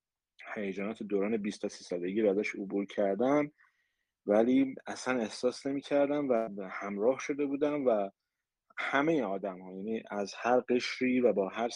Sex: male